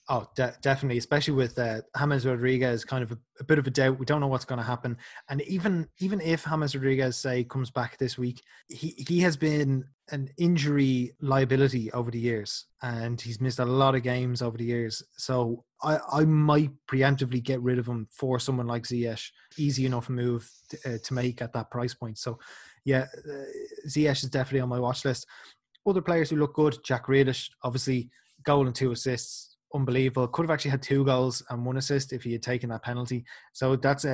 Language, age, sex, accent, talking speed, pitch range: English, 20-39, male, Irish, 205 wpm, 120-140 Hz